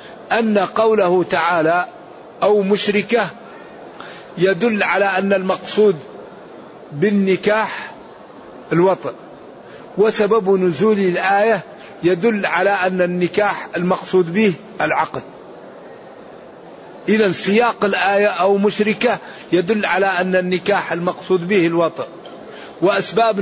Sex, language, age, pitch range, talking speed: male, Arabic, 50-69, 185-220 Hz, 85 wpm